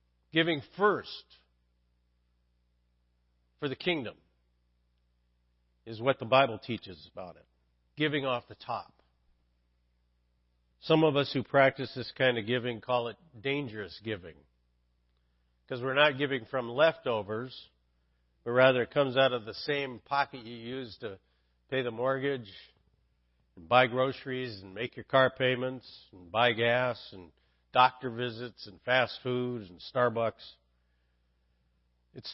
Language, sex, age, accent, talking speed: English, male, 50-69, American, 130 wpm